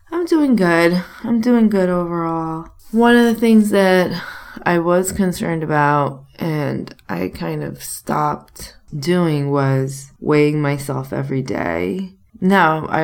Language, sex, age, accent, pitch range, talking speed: English, female, 20-39, American, 145-190 Hz, 130 wpm